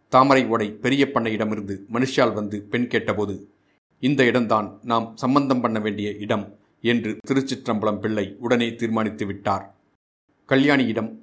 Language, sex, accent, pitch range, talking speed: Tamil, male, native, 105-125 Hz, 110 wpm